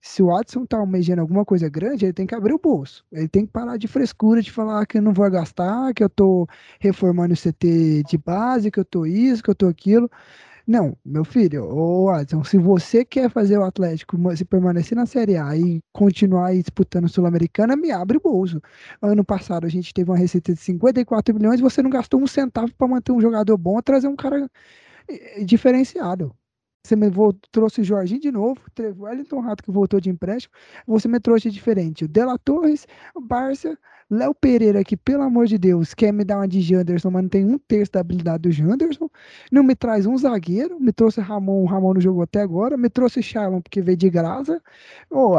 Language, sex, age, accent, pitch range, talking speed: Portuguese, male, 20-39, Brazilian, 180-240 Hz, 215 wpm